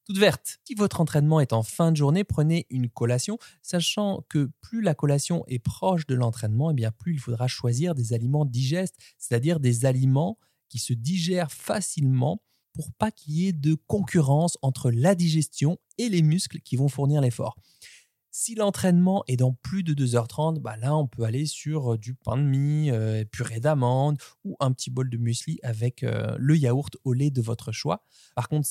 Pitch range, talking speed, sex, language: 125-170 Hz, 190 wpm, male, French